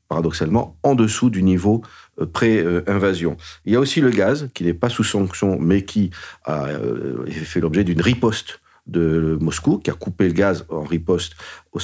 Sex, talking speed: male, 170 wpm